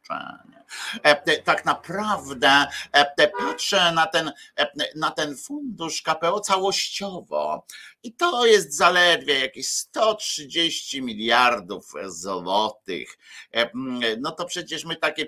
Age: 50-69